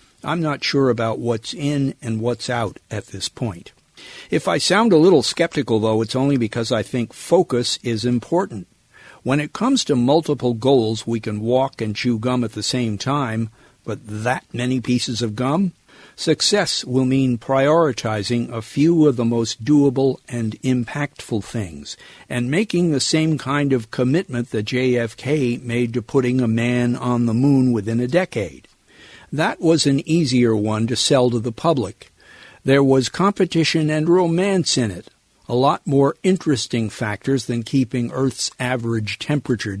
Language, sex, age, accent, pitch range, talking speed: English, male, 60-79, American, 115-145 Hz, 165 wpm